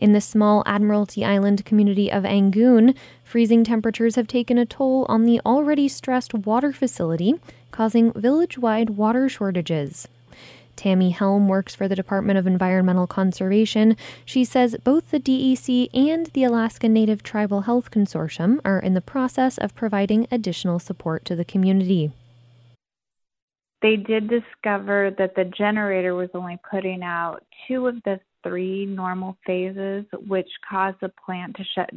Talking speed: 145 wpm